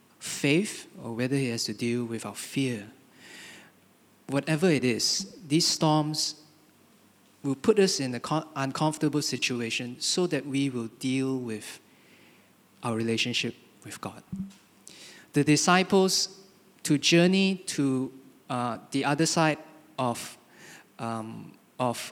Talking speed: 120 wpm